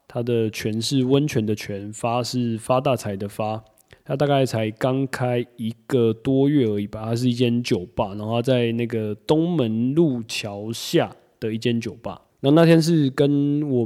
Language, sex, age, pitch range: Chinese, male, 20-39, 110-135 Hz